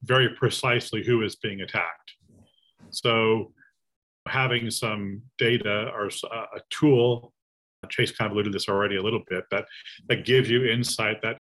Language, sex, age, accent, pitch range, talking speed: English, male, 40-59, American, 110-130 Hz, 150 wpm